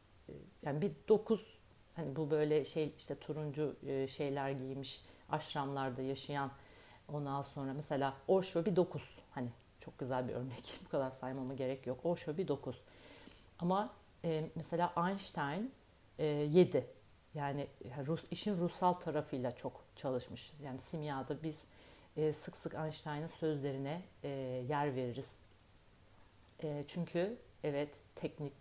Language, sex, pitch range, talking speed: Turkish, female, 125-155 Hz, 115 wpm